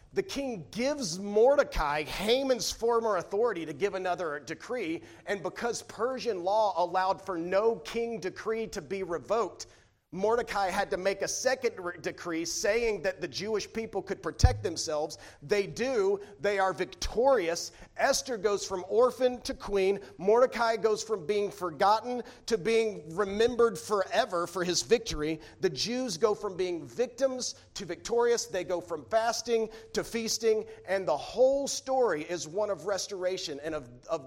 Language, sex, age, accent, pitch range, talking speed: English, male, 40-59, American, 160-220 Hz, 150 wpm